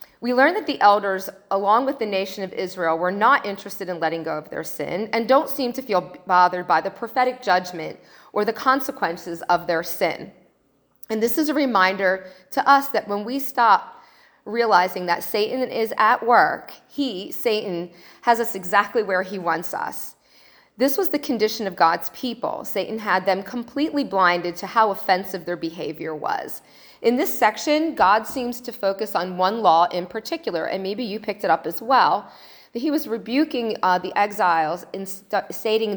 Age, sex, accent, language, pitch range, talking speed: 40-59, female, American, English, 185-245 Hz, 180 wpm